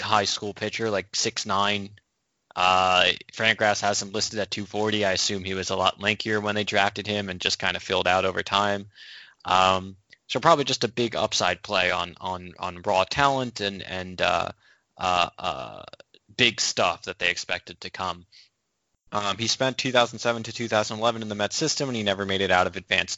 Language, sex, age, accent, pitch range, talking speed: English, male, 20-39, American, 95-115 Hz, 195 wpm